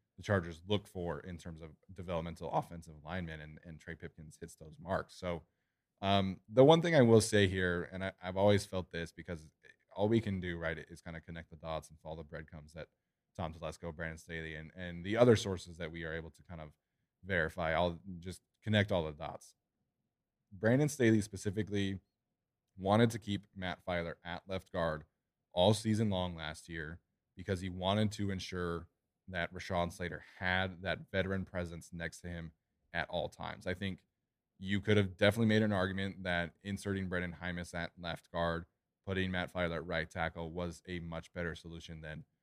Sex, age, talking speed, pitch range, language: male, 20-39, 190 wpm, 85-95 Hz, English